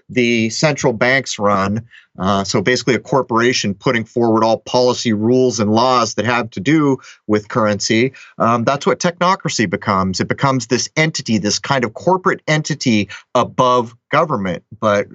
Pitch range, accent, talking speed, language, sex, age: 110-145 Hz, American, 155 wpm, English, male, 30-49